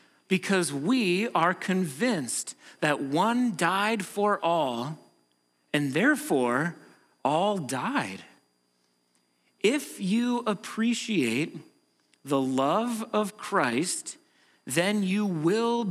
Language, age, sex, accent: English, 40-59, male, American